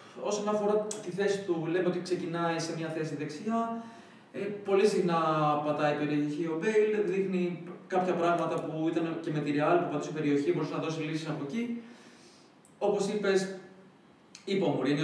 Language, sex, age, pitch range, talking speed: Greek, male, 20-39, 145-180 Hz, 170 wpm